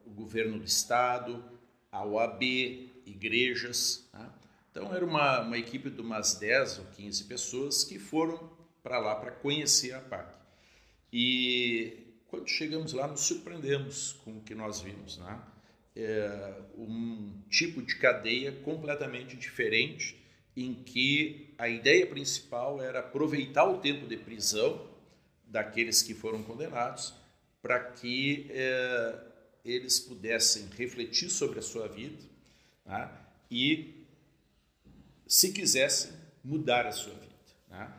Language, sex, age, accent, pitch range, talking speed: Portuguese, male, 50-69, Brazilian, 105-140 Hz, 125 wpm